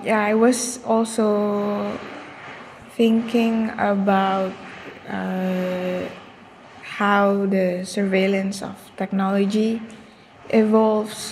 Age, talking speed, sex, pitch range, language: 20-39, 70 wpm, female, 195-215 Hz, English